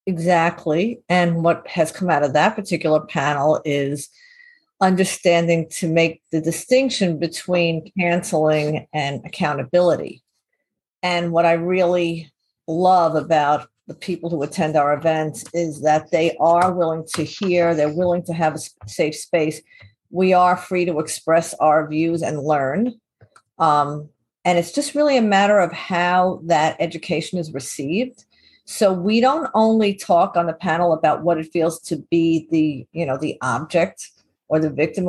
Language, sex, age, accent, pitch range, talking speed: English, female, 50-69, American, 160-185 Hz, 155 wpm